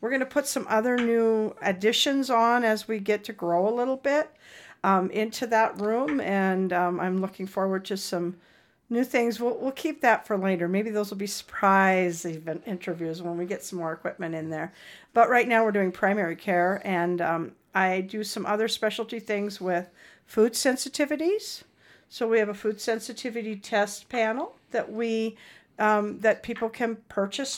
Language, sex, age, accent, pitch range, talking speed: English, female, 50-69, American, 195-235 Hz, 180 wpm